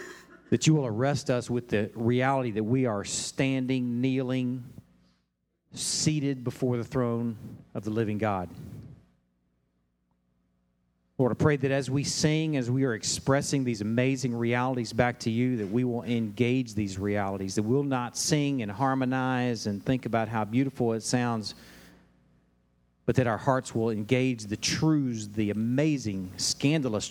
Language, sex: English, male